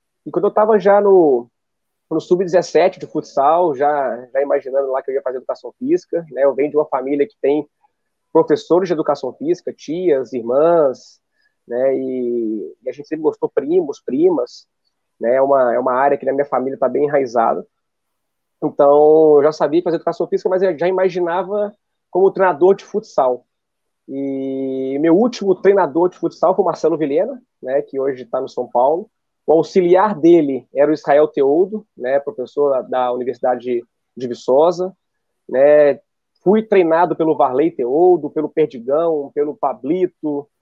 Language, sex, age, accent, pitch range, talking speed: Portuguese, male, 20-39, Brazilian, 140-200 Hz, 165 wpm